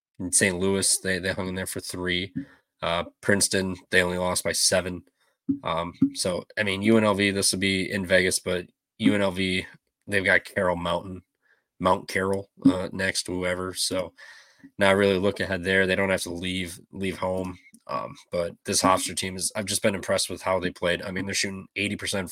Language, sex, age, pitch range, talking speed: English, male, 20-39, 90-100 Hz, 190 wpm